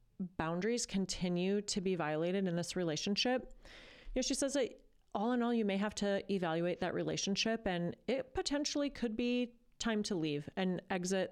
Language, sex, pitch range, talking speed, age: English, female, 165-220 Hz, 175 wpm, 30-49